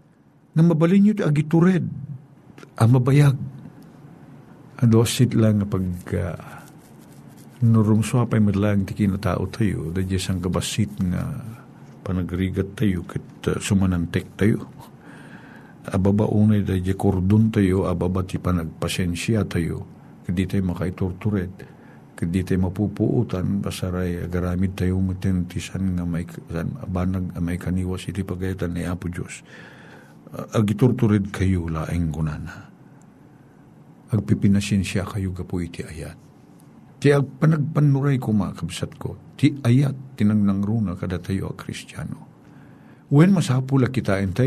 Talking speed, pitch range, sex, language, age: 115 wpm, 90-125 Hz, male, Filipino, 50-69